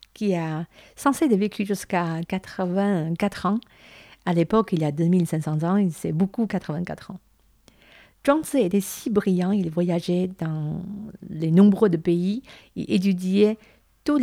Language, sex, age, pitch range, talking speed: French, female, 50-69, 160-205 Hz, 135 wpm